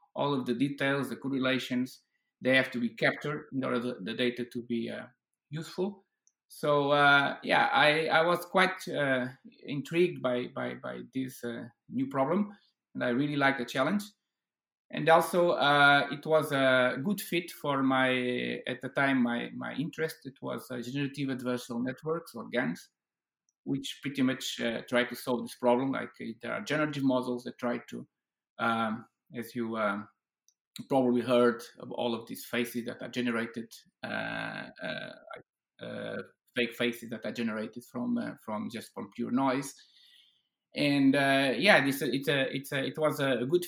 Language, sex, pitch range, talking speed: English, male, 120-145 Hz, 170 wpm